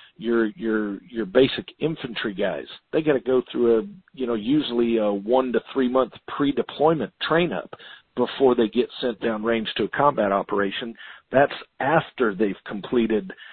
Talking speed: 165 wpm